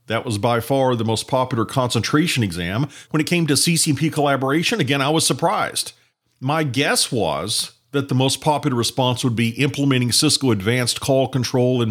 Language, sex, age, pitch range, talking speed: English, male, 50-69, 120-155 Hz, 175 wpm